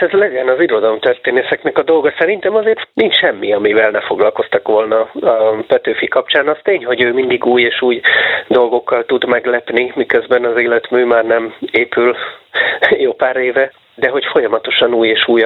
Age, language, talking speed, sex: 30-49, Hungarian, 165 wpm, male